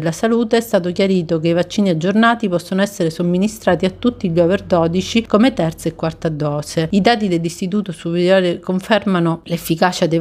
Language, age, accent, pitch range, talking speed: Italian, 40-59, native, 165-200 Hz, 170 wpm